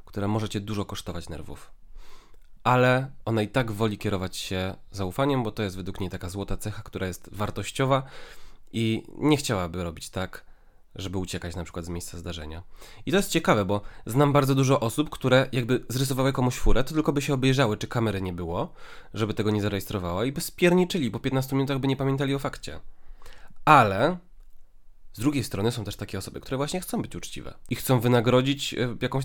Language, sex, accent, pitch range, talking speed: Polish, male, native, 95-135 Hz, 190 wpm